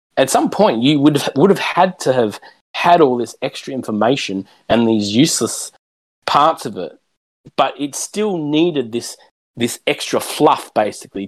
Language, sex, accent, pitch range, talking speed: English, male, Australian, 105-145 Hz, 165 wpm